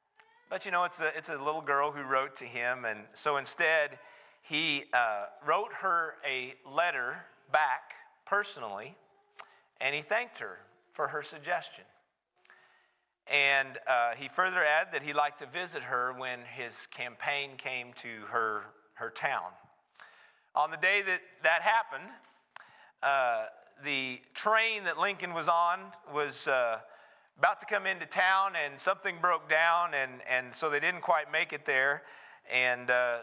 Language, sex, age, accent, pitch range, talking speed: English, male, 40-59, American, 135-180 Hz, 155 wpm